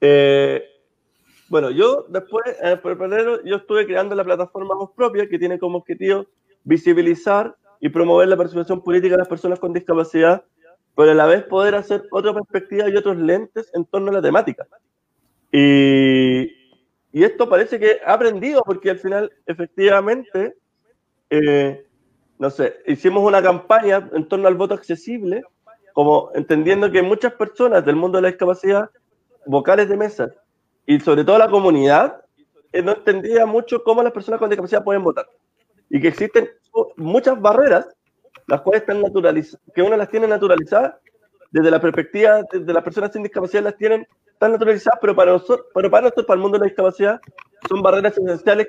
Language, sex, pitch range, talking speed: Spanish, male, 180-225 Hz, 170 wpm